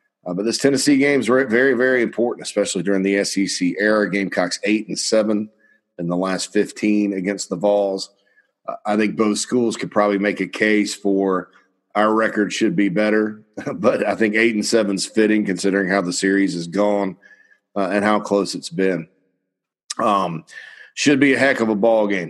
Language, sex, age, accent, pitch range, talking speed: English, male, 40-59, American, 95-110 Hz, 185 wpm